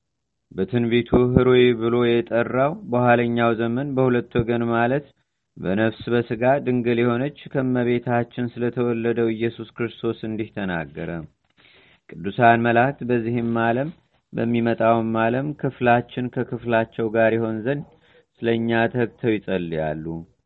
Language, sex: Amharic, male